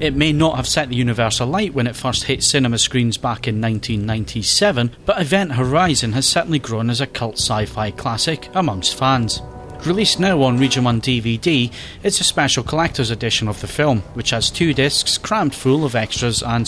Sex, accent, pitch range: male, British, 115-150 Hz